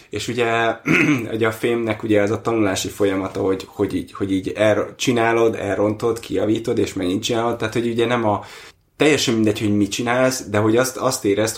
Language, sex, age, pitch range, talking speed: Hungarian, male, 20-39, 100-115 Hz, 190 wpm